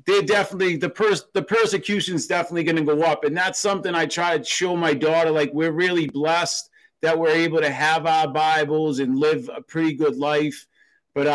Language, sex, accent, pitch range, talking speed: English, male, American, 160-190 Hz, 205 wpm